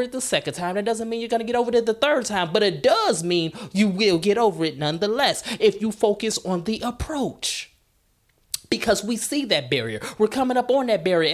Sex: male